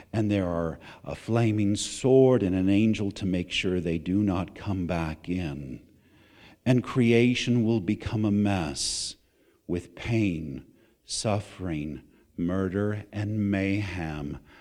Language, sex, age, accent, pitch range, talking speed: English, male, 50-69, American, 95-120 Hz, 125 wpm